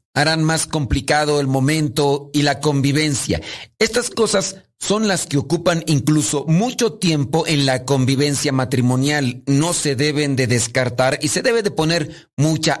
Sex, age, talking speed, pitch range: male, 40-59, 150 wpm, 135-165 Hz